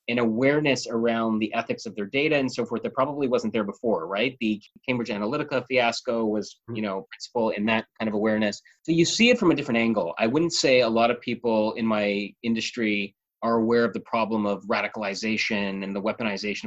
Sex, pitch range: male, 105-125 Hz